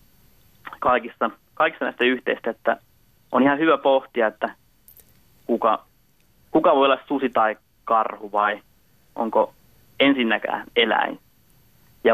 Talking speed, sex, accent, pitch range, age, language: 110 wpm, male, native, 110-140 Hz, 30-49, Finnish